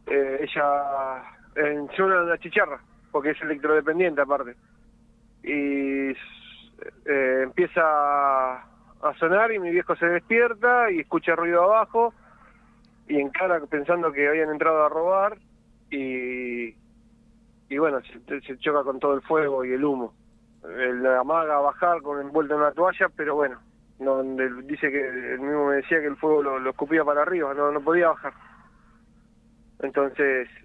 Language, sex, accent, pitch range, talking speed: Spanish, male, Argentinian, 145-205 Hz, 150 wpm